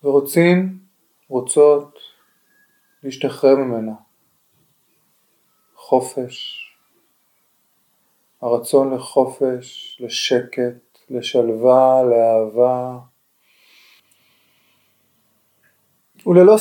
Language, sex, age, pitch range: Hebrew, male, 30-49, 130-160 Hz